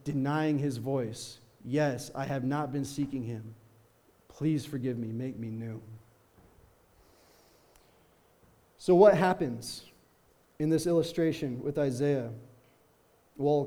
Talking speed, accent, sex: 110 wpm, American, male